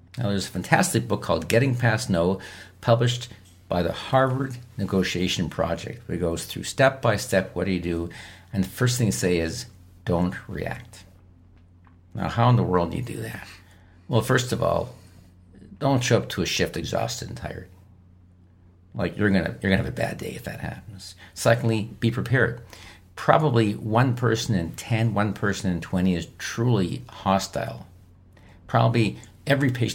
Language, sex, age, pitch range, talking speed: English, male, 50-69, 90-115 Hz, 175 wpm